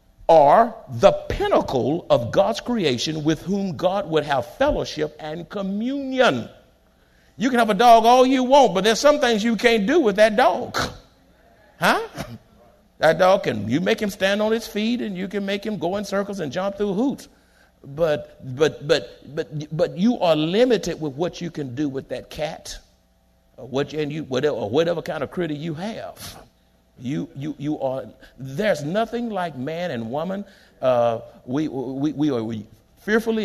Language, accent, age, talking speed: English, American, 50-69, 180 wpm